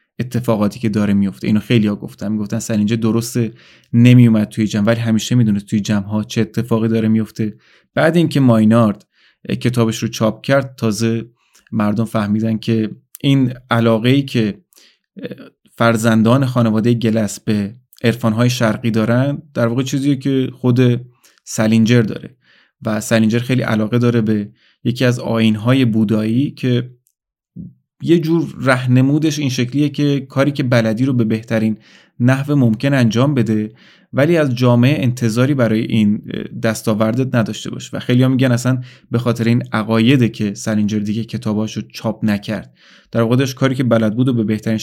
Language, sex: Persian, male